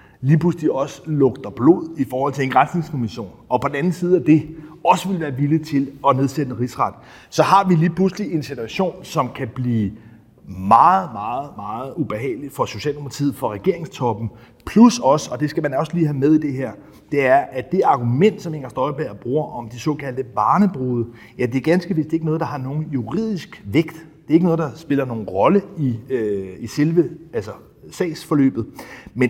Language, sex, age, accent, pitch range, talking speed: Danish, male, 30-49, native, 125-160 Hz, 205 wpm